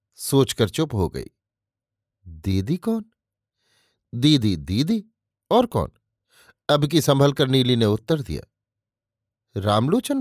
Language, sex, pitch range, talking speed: Hindi, male, 110-150 Hz, 120 wpm